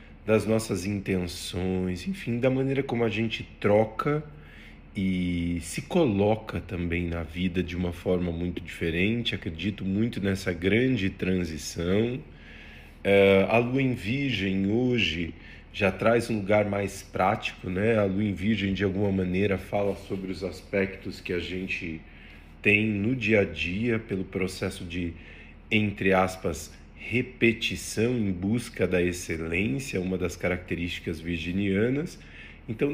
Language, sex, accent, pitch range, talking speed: Portuguese, male, Brazilian, 90-110 Hz, 130 wpm